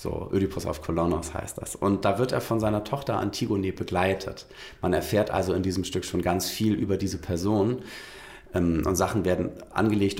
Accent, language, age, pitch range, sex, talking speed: German, German, 40-59, 85-100 Hz, male, 180 wpm